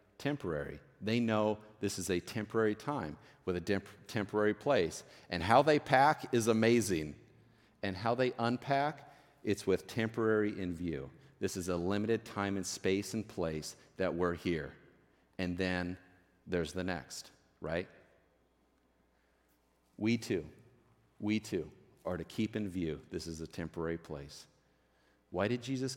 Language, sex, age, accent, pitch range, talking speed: English, male, 40-59, American, 75-115 Hz, 145 wpm